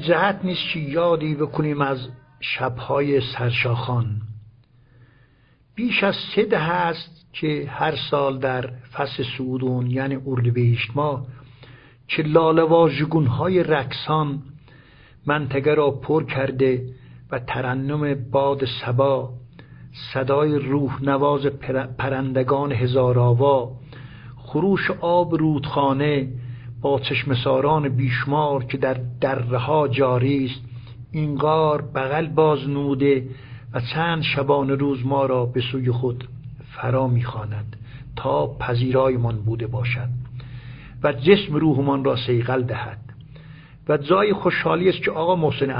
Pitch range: 125-145 Hz